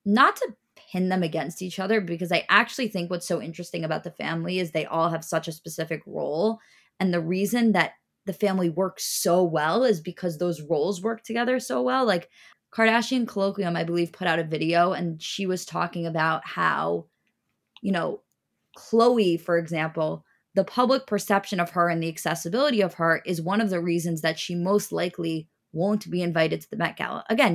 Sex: female